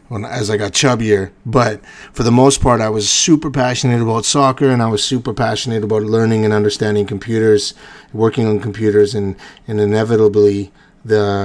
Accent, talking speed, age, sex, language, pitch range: American, 170 wpm, 30-49, male, English, 105-130 Hz